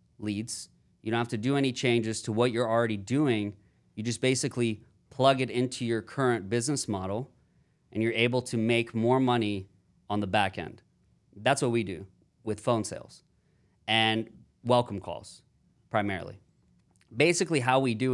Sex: male